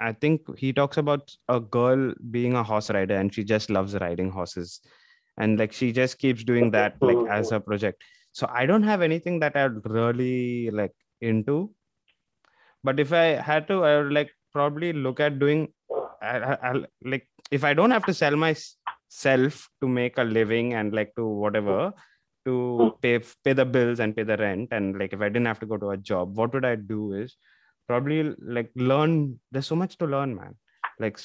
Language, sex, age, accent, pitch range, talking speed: English, male, 20-39, Indian, 110-135 Hz, 200 wpm